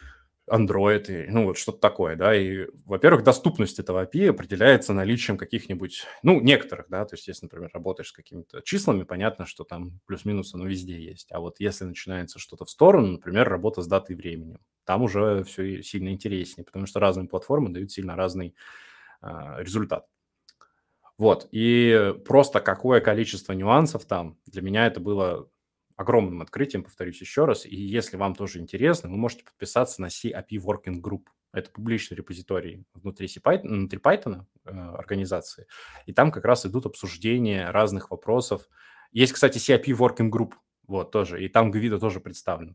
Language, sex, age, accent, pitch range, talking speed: Russian, male, 20-39, native, 95-110 Hz, 165 wpm